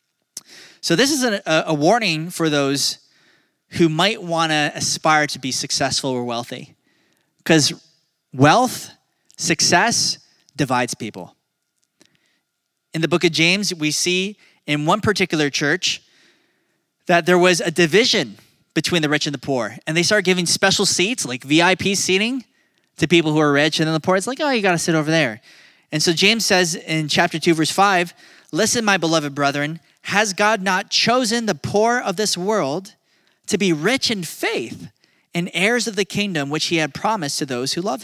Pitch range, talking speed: 155-200 Hz, 175 wpm